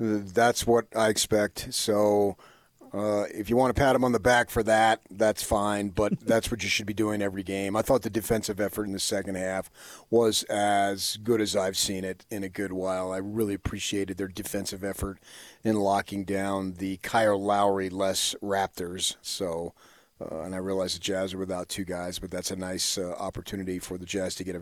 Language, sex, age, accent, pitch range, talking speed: English, male, 40-59, American, 95-110 Hz, 205 wpm